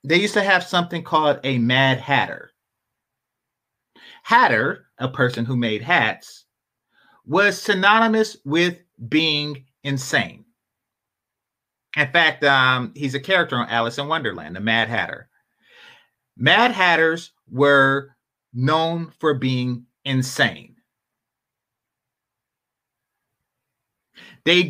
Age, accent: 40-59, American